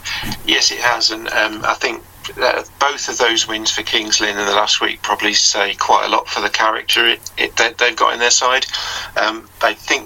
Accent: British